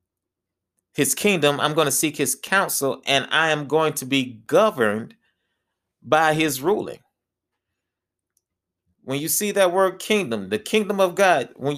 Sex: male